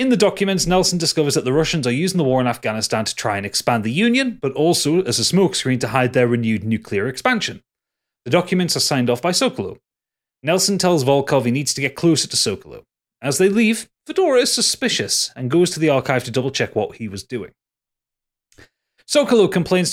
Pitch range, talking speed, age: 125-175 Hz, 205 wpm, 30-49